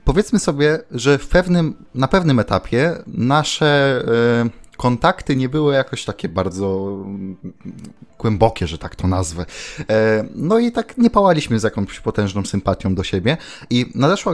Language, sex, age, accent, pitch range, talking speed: Polish, male, 20-39, native, 100-130 Hz, 140 wpm